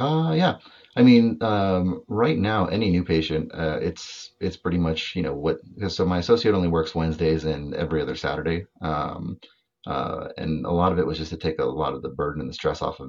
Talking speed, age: 225 wpm, 30-49